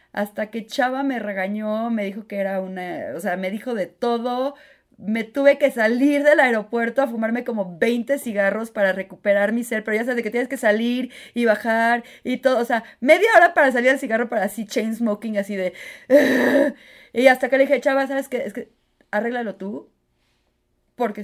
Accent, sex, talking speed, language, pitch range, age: Mexican, female, 200 wpm, Spanish, 200-255 Hz, 30-49